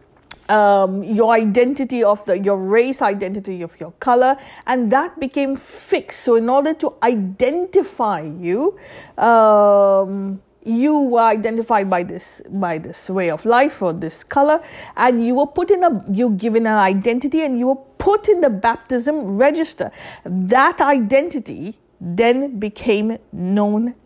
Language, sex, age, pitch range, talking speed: English, female, 50-69, 205-280 Hz, 145 wpm